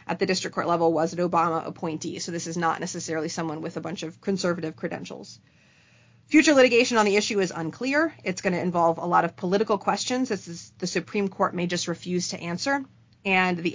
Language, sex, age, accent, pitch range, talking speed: English, female, 30-49, American, 170-195 Hz, 215 wpm